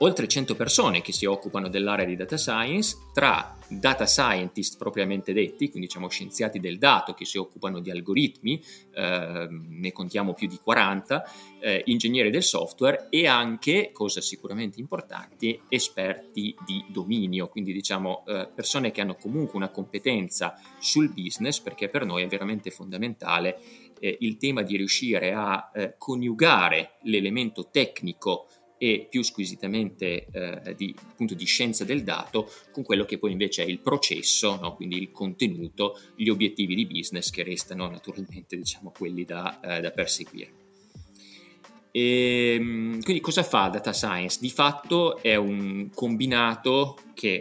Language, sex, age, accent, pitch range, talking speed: Italian, male, 30-49, native, 95-125 Hz, 150 wpm